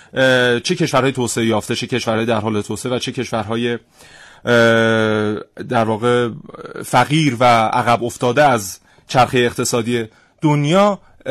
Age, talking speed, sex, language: 30-49, 115 wpm, male, Persian